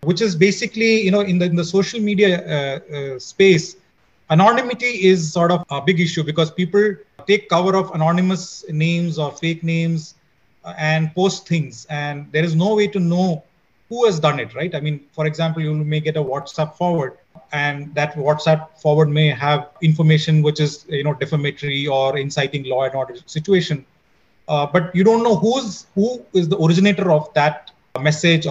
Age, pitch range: 30-49, 145-180 Hz